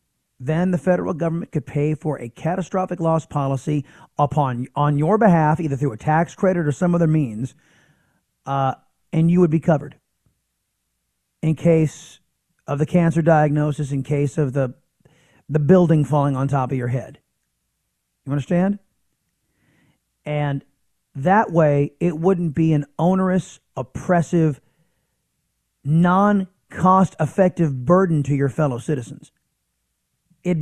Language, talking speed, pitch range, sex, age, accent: English, 130 wpm, 140-175 Hz, male, 30-49, American